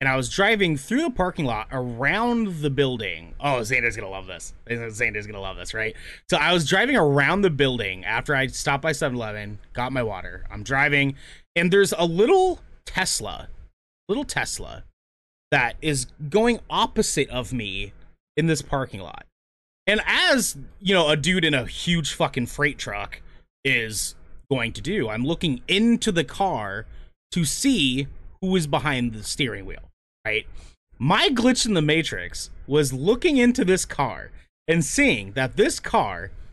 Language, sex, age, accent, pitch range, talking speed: English, male, 30-49, American, 115-195 Hz, 170 wpm